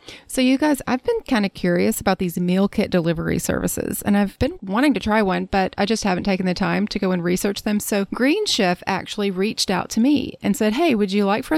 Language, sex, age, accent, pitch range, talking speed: English, female, 30-49, American, 190-245 Hz, 250 wpm